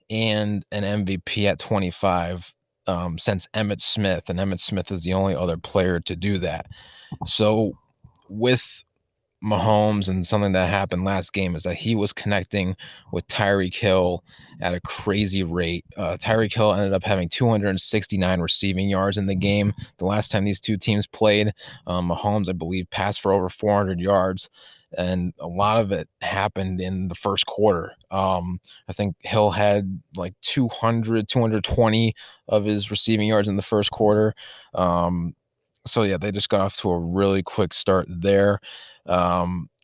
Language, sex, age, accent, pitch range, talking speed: English, male, 20-39, American, 95-105 Hz, 165 wpm